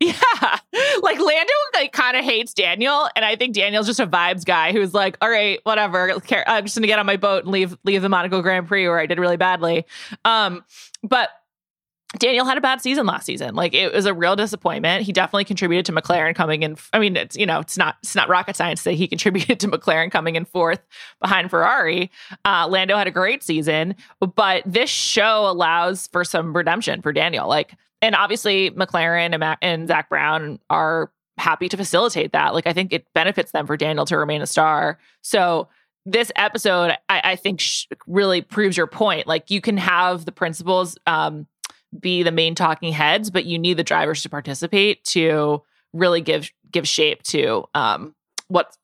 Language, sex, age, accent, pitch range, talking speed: English, female, 20-39, American, 170-210 Hz, 195 wpm